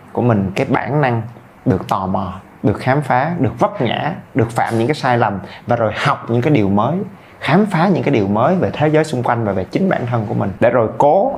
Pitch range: 110-165 Hz